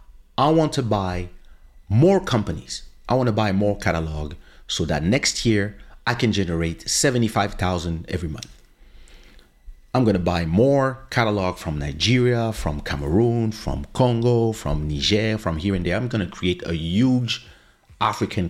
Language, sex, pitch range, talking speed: English, male, 85-115 Hz, 150 wpm